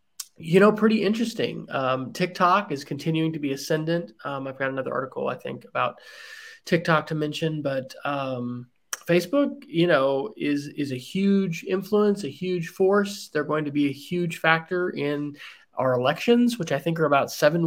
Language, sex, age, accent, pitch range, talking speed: English, male, 30-49, American, 135-180 Hz, 175 wpm